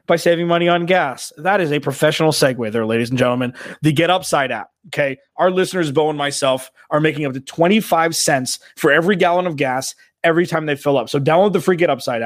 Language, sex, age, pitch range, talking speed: English, male, 20-39, 140-170 Hz, 215 wpm